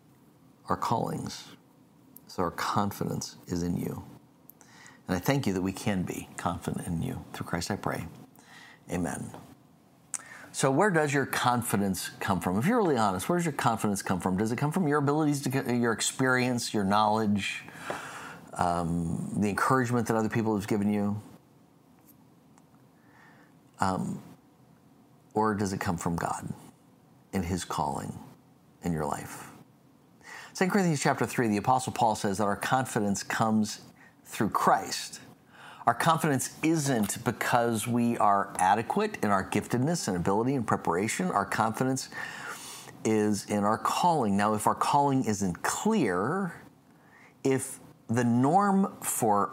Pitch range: 100-130 Hz